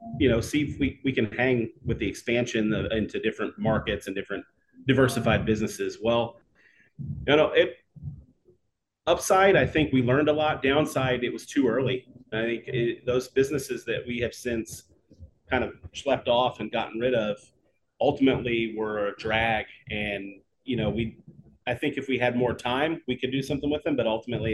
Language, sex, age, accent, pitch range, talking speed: English, male, 30-49, American, 105-135 Hz, 185 wpm